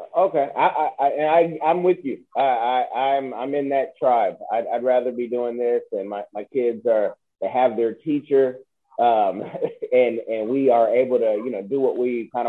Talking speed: 205 wpm